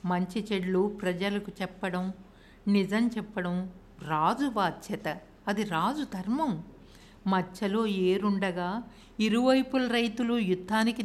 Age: 60-79